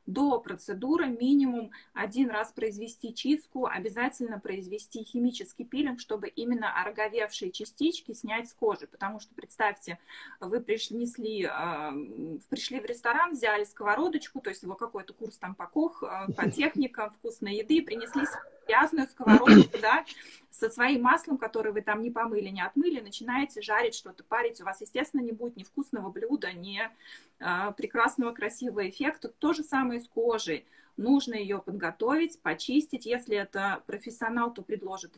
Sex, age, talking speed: female, 20-39, 145 wpm